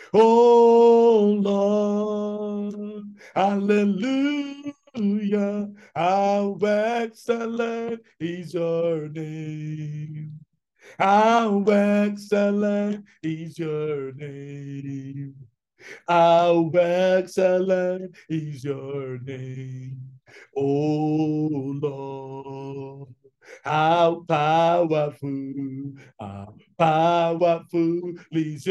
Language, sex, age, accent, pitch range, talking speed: English, male, 60-79, American, 155-205 Hz, 55 wpm